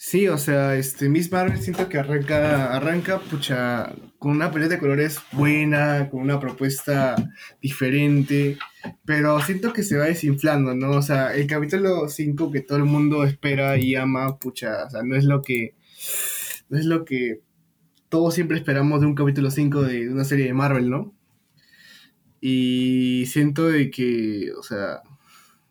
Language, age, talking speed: Spanish, 20-39, 165 wpm